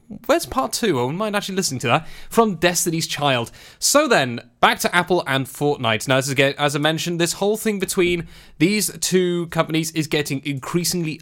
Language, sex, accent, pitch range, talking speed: English, male, British, 135-185 Hz, 180 wpm